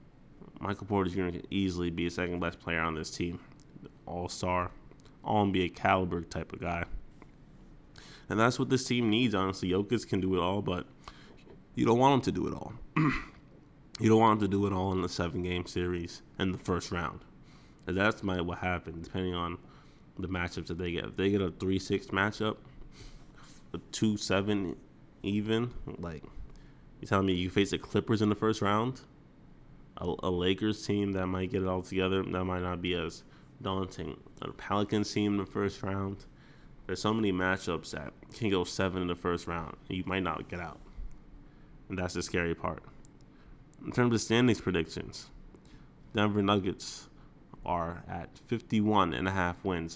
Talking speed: 175 wpm